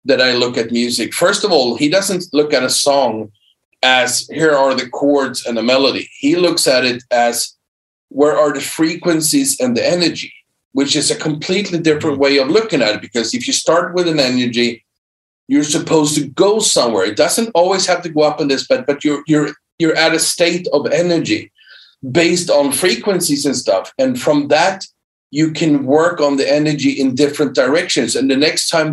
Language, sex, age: English, male, 40-59